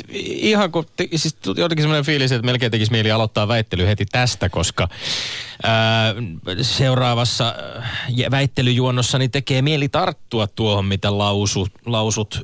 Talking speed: 115 wpm